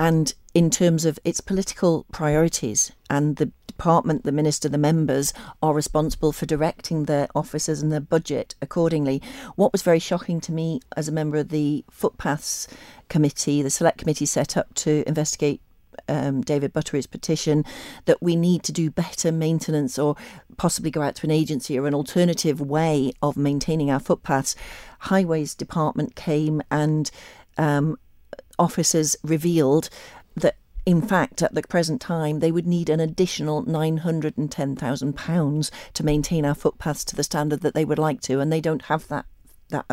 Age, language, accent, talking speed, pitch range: 40-59, English, British, 160 wpm, 145-165 Hz